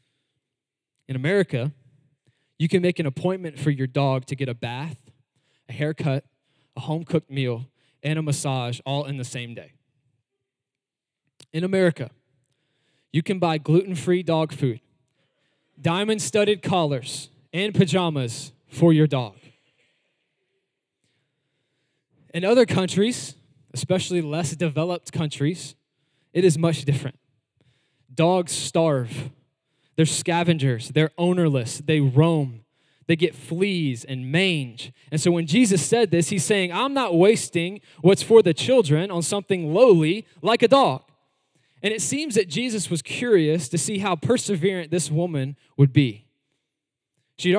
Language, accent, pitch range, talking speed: English, American, 135-175 Hz, 130 wpm